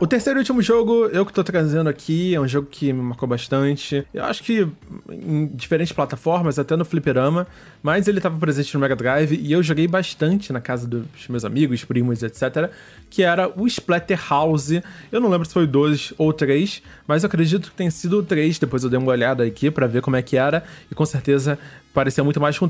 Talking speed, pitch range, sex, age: 225 wpm, 130-175 Hz, male, 20-39